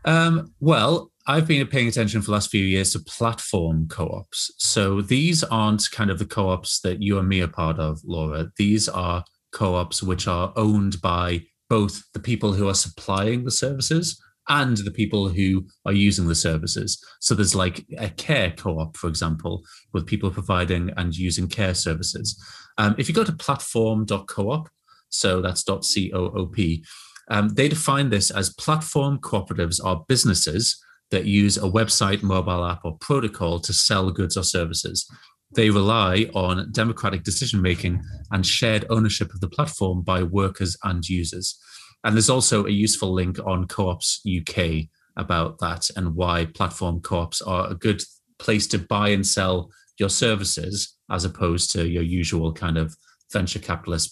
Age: 30-49